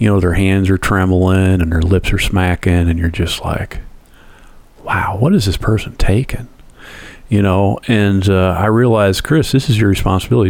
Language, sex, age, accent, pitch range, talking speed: English, male, 40-59, American, 95-110 Hz, 185 wpm